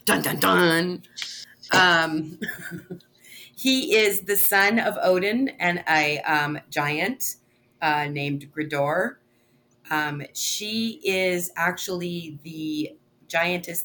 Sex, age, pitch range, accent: female, 30-49, 135-175 Hz, American